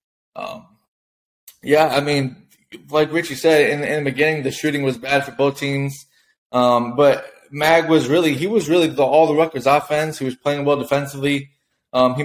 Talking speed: 185 wpm